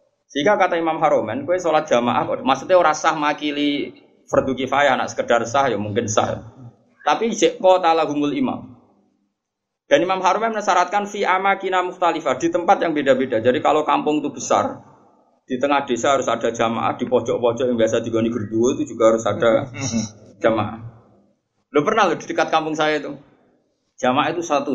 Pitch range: 120-185 Hz